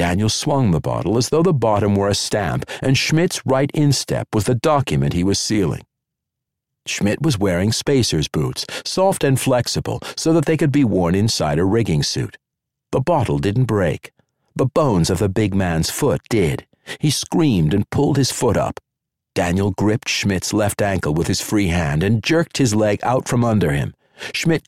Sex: male